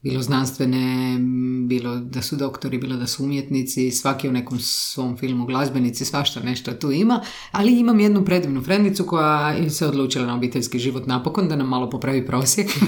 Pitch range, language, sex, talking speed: 130-175 Hz, Croatian, female, 175 wpm